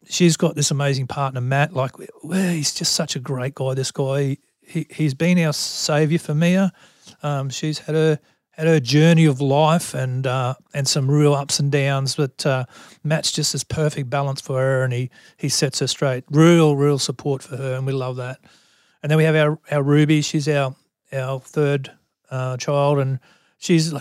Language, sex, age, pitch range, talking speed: English, male, 40-59, 135-155 Hz, 195 wpm